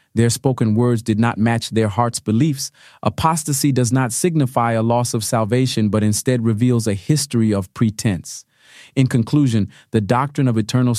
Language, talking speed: English, 165 wpm